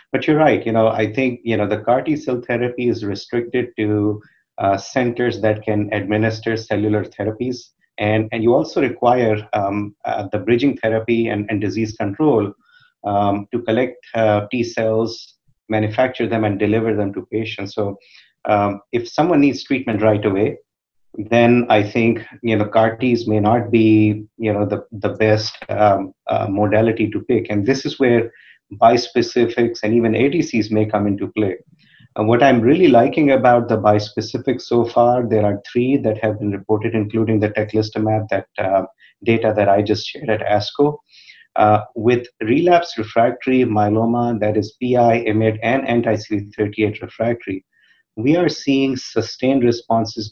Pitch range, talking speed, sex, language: 105-120 Hz, 165 wpm, male, English